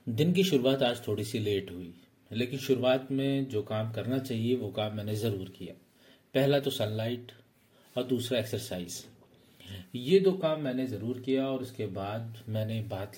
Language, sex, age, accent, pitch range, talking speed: Hindi, male, 40-59, native, 110-135 Hz, 170 wpm